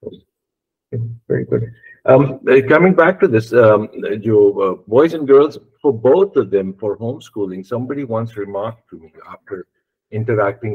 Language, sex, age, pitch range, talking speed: Urdu, male, 50-69, 95-135 Hz, 155 wpm